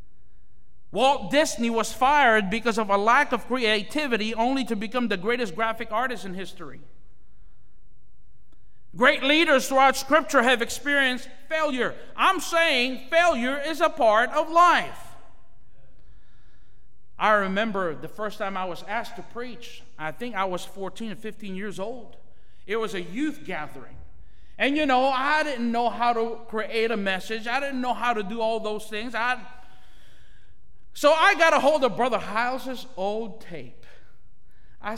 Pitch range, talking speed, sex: 185-245 Hz, 155 wpm, male